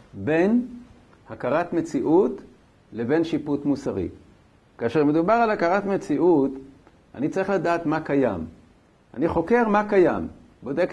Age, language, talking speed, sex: 60-79, Hebrew, 115 wpm, male